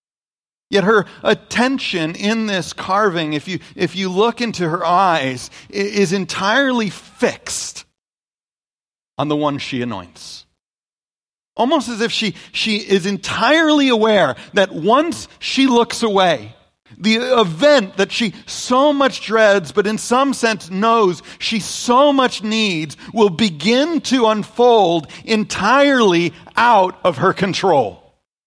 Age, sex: 40-59, male